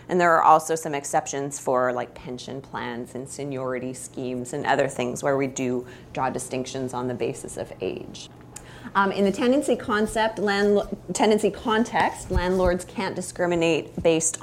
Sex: female